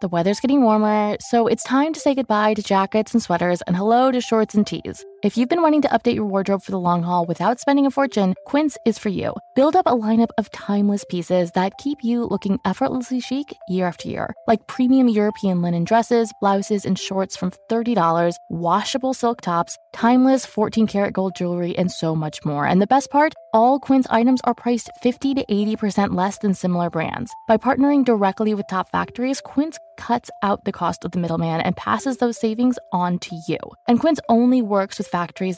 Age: 20-39